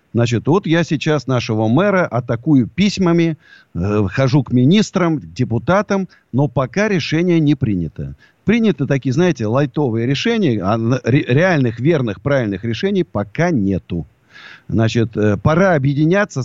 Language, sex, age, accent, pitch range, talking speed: Russian, male, 50-69, native, 115-160 Hz, 120 wpm